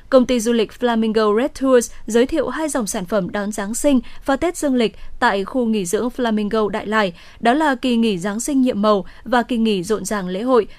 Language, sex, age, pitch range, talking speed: Vietnamese, female, 10-29, 215-265 Hz, 235 wpm